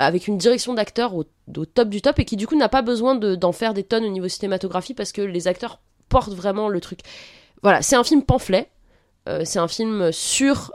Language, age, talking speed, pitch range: French, 20-39, 235 wpm, 180-230 Hz